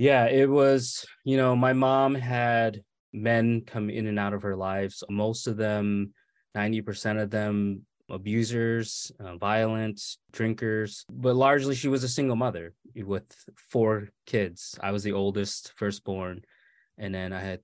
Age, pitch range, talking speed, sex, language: 20-39, 95-115 Hz, 155 wpm, male, English